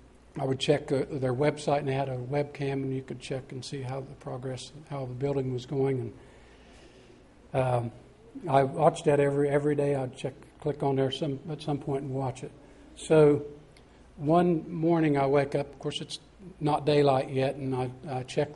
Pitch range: 130-150 Hz